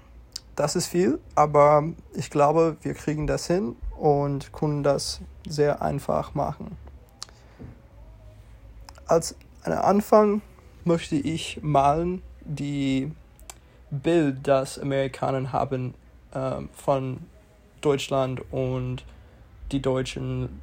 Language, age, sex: German, 20-39, male